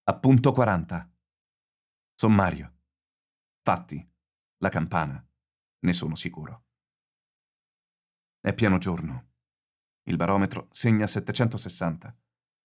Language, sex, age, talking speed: Italian, male, 40-59, 75 wpm